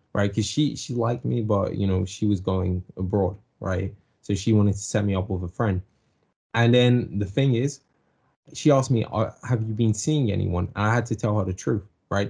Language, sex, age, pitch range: English, male, 20-39, 95-115 Hz